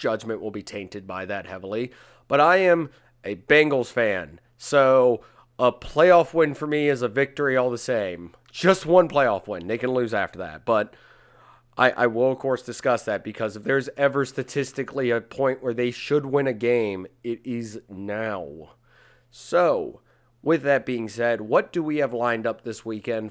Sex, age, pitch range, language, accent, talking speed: male, 30-49, 105-135 Hz, English, American, 185 wpm